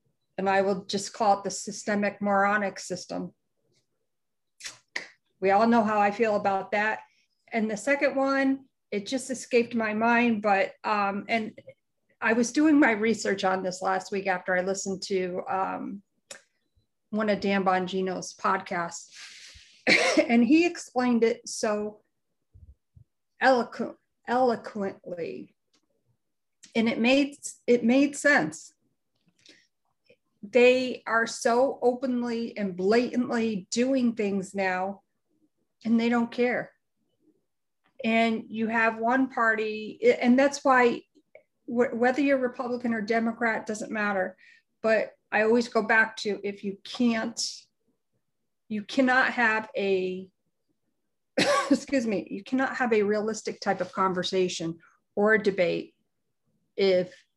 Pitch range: 195-245 Hz